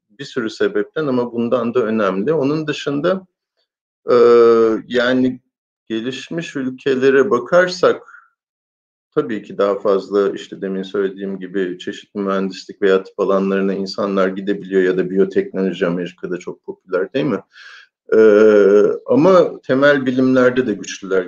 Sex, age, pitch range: male, 50-69, 100-145 Hz